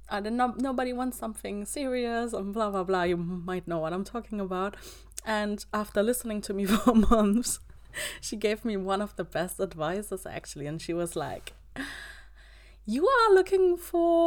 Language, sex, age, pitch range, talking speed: English, female, 20-39, 165-230 Hz, 175 wpm